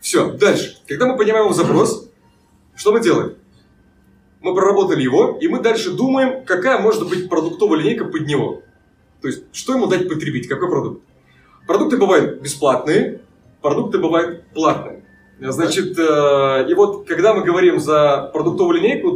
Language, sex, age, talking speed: Russian, male, 20-39, 145 wpm